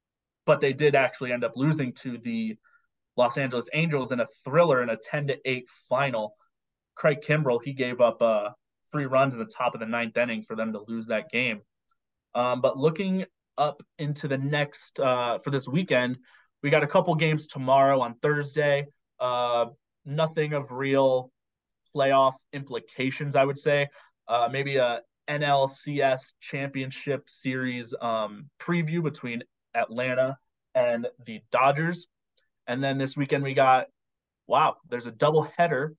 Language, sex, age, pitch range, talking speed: English, male, 20-39, 120-145 Hz, 155 wpm